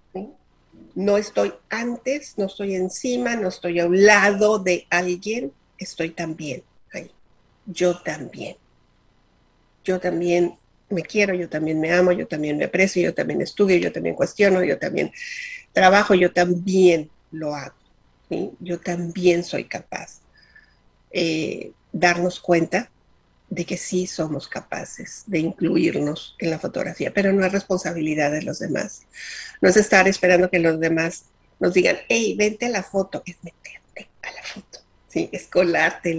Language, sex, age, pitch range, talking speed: Spanish, female, 50-69, 175-210 Hz, 155 wpm